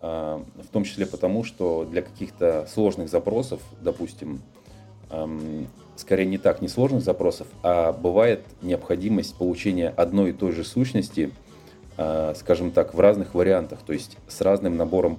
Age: 30-49